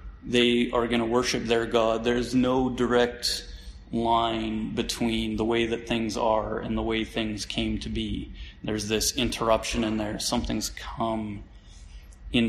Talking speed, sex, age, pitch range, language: 155 wpm, male, 30-49, 105-120 Hz, English